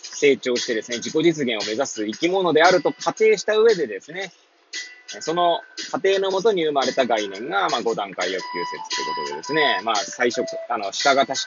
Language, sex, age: Japanese, male, 20-39